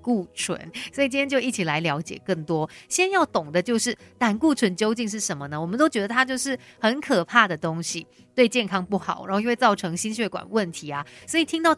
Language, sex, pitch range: Chinese, female, 180-250 Hz